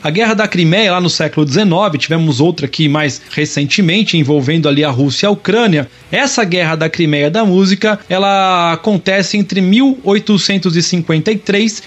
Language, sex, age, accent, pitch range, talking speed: Portuguese, male, 20-39, Brazilian, 155-205 Hz, 150 wpm